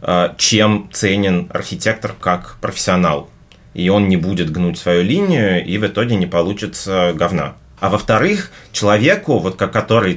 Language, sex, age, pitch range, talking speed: Russian, male, 30-49, 90-110 Hz, 135 wpm